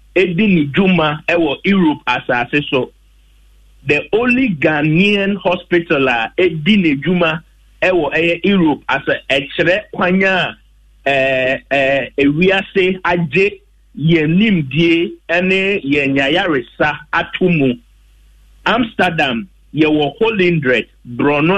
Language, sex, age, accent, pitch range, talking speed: English, male, 50-69, Nigerian, 140-180 Hz, 95 wpm